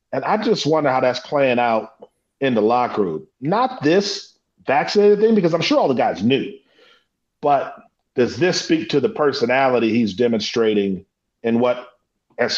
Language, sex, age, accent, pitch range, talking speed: English, male, 40-59, American, 115-150 Hz, 165 wpm